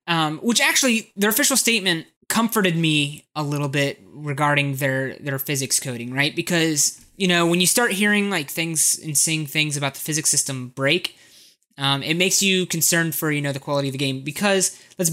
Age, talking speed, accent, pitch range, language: 20-39, 195 wpm, American, 140-170 Hz, English